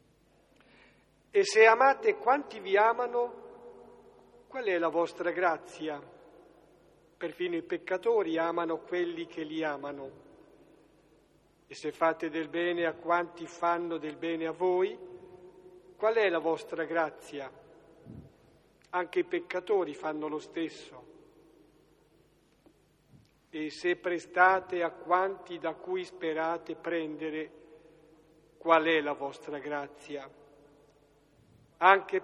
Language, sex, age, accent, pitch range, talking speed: Italian, male, 50-69, native, 160-240 Hz, 105 wpm